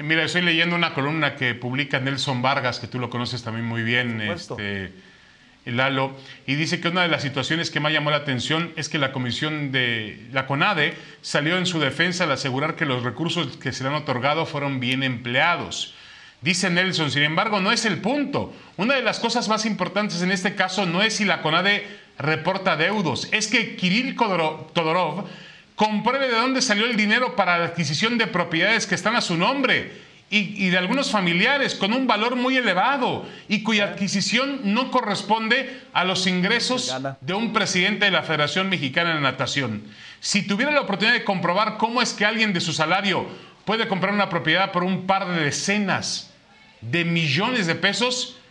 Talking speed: 190 wpm